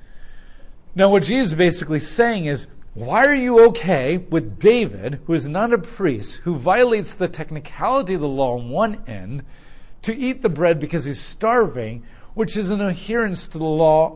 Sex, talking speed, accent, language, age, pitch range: male, 180 wpm, American, English, 40-59, 130-205 Hz